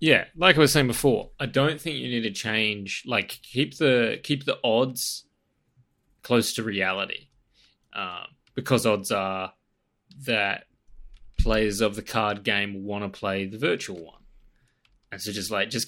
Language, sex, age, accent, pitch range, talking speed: English, male, 20-39, Australian, 105-125 Hz, 165 wpm